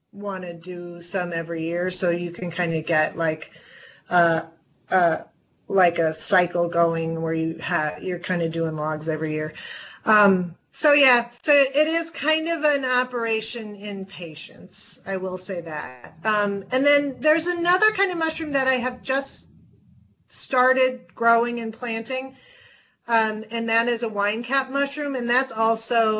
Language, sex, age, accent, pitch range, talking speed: English, female, 30-49, American, 180-240 Hz, 165 wpm